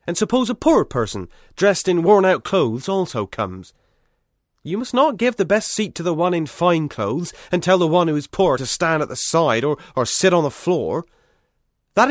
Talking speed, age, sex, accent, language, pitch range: 215 wpm, 30-49, male, British, English, 145-195 Hz